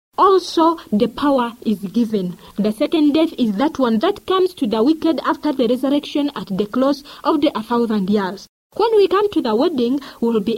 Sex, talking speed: female, 205 wpm